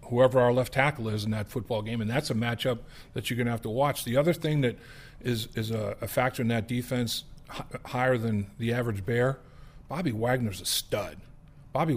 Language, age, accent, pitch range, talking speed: English, 50-69, American, 110-130 Hz, 215 wpm